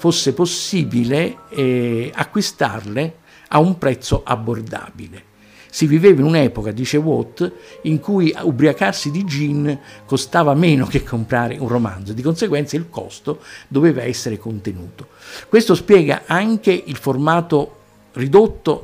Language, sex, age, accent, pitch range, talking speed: Italian, male, 50-69, native, 120-165 Hz, 120 wpm